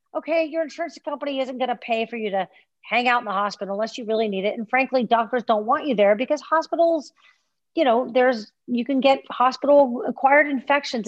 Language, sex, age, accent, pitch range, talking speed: English, female, 40-59, American, 190-250 Hz, 210 wpm